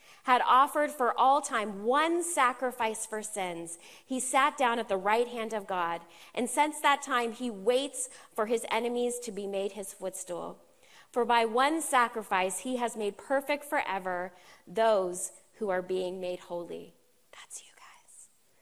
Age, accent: 30-49, American